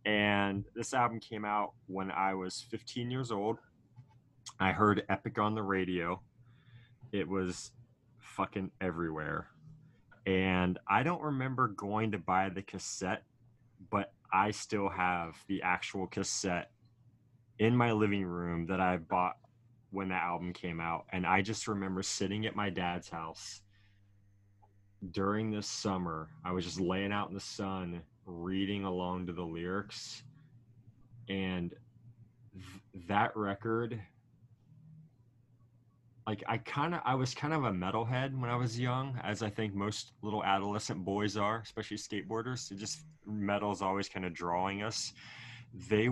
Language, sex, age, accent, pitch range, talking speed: English, male, 20-39, American, 95-120 Hz, 145 wpm